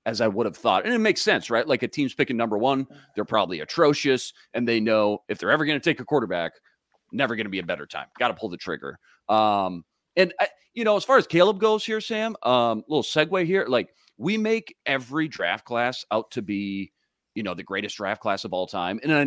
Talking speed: 240 wpm